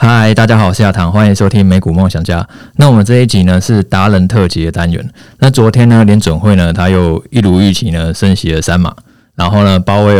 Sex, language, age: male, Chinese, 20-39